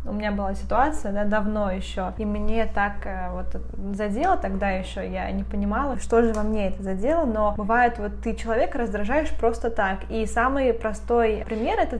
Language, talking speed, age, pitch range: Russian, 175 wpm, 20-39, 205-235 Hz